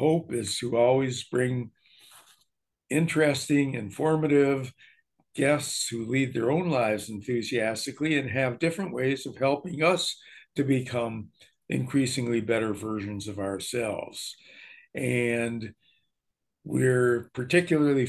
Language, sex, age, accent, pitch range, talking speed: English, male, 60-79, American, 130-160 Hz, 105 wpm